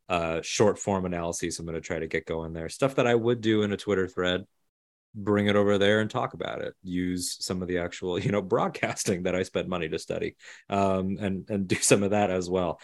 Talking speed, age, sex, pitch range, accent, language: 245 wpm, 30-49, male, 90-105 Hz, American, English